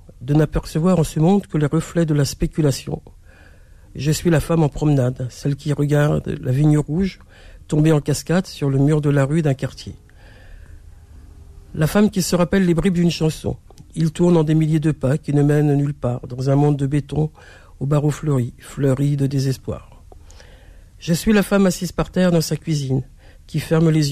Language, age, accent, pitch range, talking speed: French, 60-79, French, 120-165 Hz, 195 wpm